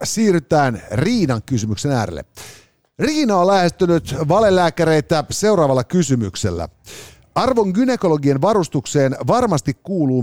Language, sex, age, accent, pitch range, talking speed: Finnish, male, 50-69, native, 110-165 Hz, 90 wpm